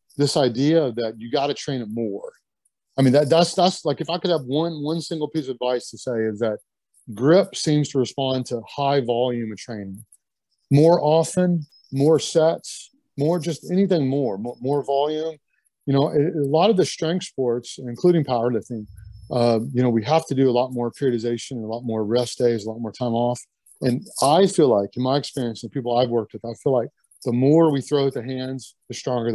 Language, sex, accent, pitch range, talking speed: English, male, American, 120-150 Hz, 215 wpm